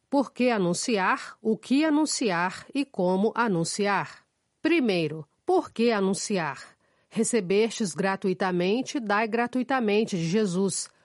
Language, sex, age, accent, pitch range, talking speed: Portuguese, female, 40-59, Brazilian, 180-240 Hz, 105 wpm